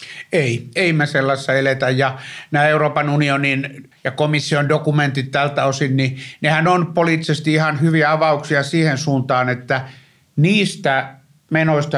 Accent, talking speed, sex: native, 130 wpm, male